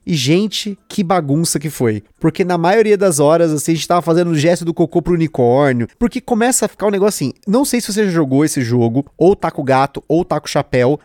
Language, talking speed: Portuguese, 255 wpm